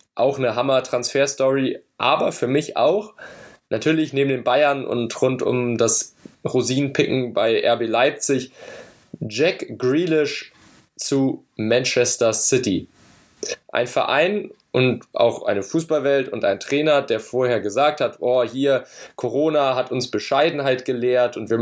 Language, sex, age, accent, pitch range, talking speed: German, male, 10-29, German, 120-140 Hz, 130 wpm